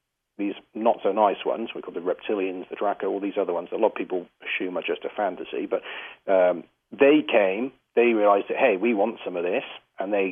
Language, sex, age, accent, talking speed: English, male, 40-59, British, 220 wpm